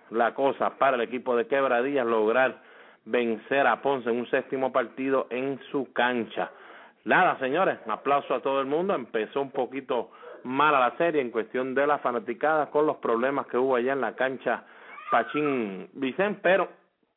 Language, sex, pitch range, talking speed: English, male, 115-140 Hz, 170 wpm